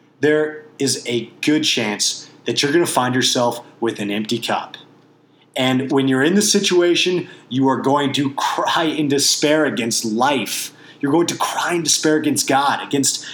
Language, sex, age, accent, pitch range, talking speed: English, male, 30-49, American, 135-155 Hz, 175 wpm